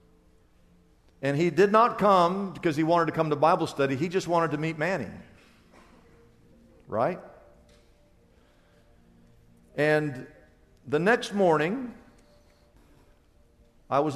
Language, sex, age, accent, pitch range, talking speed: English, male, 50-69, American, 115-185 Hz, 110 wpm